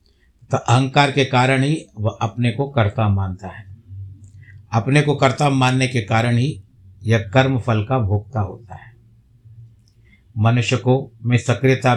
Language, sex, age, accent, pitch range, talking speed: Hindi, male, 60-79, native, 100-130 Hz, 145 wpm